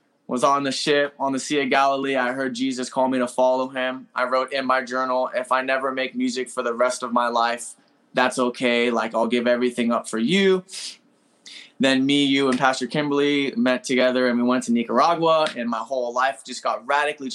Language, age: English, 20-39